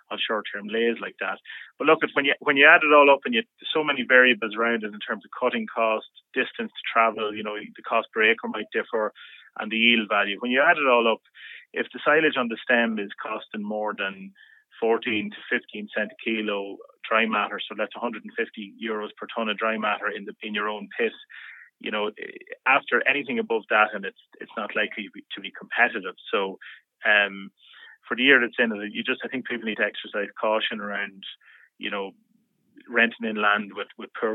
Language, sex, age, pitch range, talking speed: English, male, 30-49, 105-135 Hz, 215 wpm